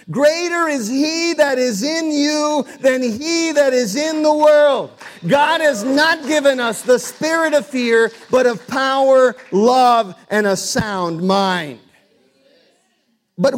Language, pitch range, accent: English, 225-290 Hz, American